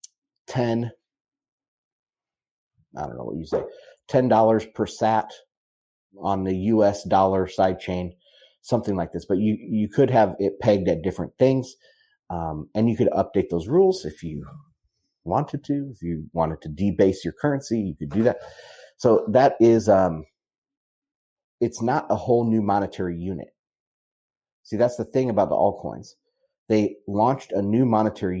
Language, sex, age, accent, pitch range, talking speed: English, male, 30-49, American, 95-130 Hz, 155 wpm